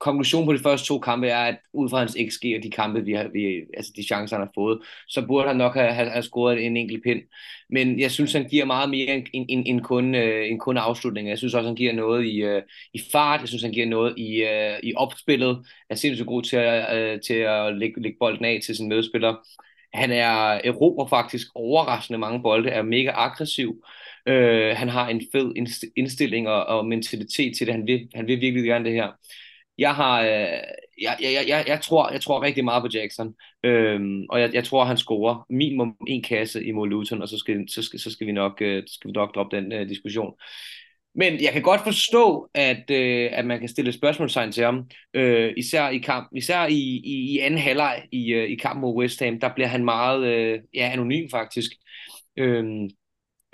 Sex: male